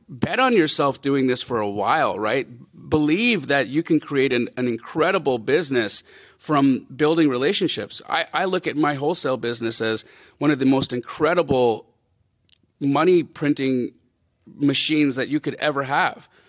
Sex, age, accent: male, 40-59, American